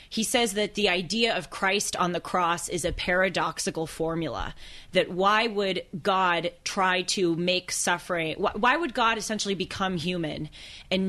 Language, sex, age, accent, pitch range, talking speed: English, female, 20-39, American, 165-200 Hz, 160 wpm